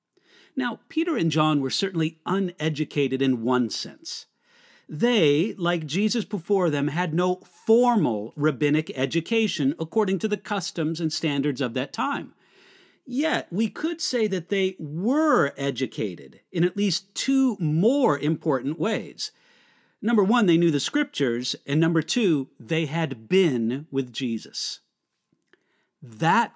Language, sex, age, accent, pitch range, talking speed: English, male, 50-69, American, 150-215 Hz, 135 wpm